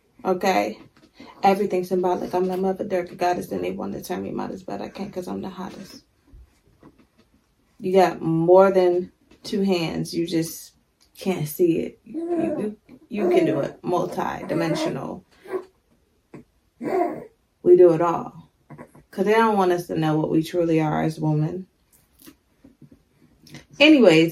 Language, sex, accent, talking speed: English, female, American, 145 wpm